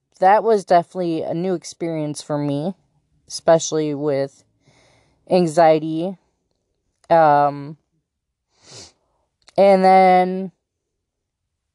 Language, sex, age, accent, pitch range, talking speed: English, female, 20-39, American, 150-185 Hz, 70 wpm